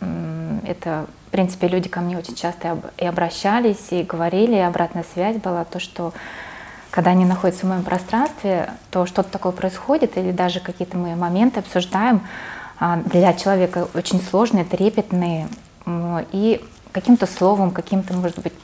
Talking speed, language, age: 145 wpm, Russian, 20-39